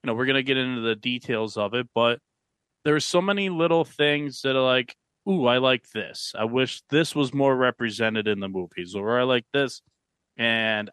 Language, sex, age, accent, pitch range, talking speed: English, male, 30-49, American, 110-135 Hz, 210 wpm